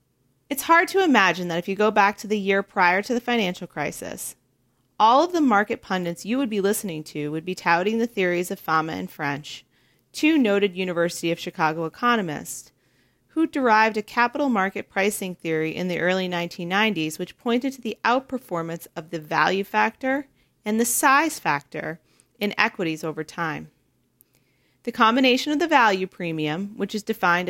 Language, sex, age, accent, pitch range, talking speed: English, female, 30-49, American, 165-220 Hz, 170 wpm